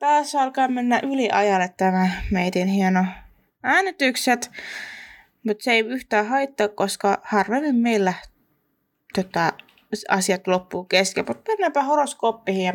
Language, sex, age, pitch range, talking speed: Finnish, female, 20-39, 190-260 Hz, 105 wpm